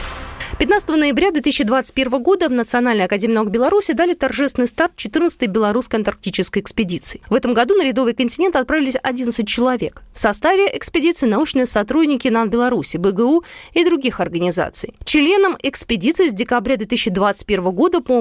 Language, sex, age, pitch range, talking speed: Russian, female, 20-39, 210-285 Hz, 140 wpm